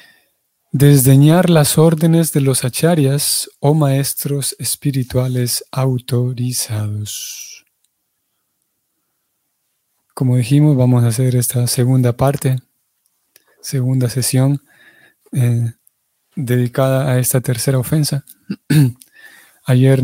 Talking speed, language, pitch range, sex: 80 wpm, Spanish, 130-145 Hz, male